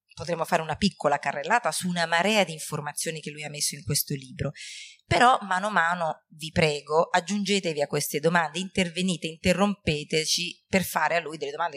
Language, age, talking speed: Italian, 30-49, 180 wpm